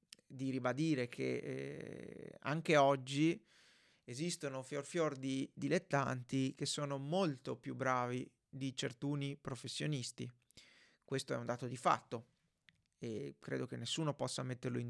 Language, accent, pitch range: Italian, native, 135-165 Hz